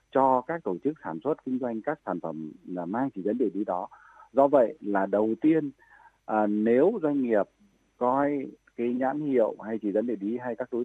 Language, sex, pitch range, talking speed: Vietnamese, male, 100-135 Hz, 215 wpm